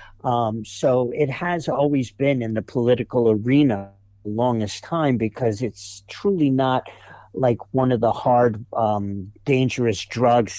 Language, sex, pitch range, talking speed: English, male, 105-130 Hz, 140 wpm